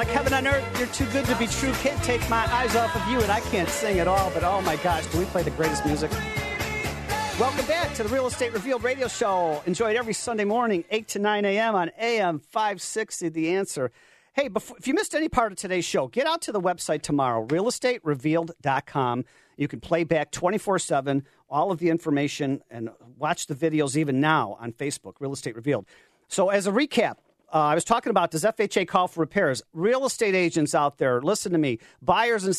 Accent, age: American, 40-59